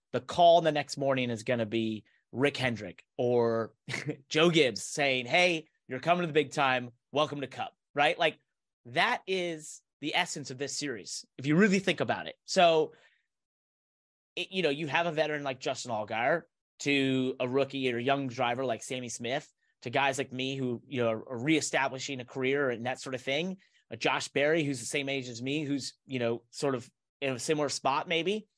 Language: English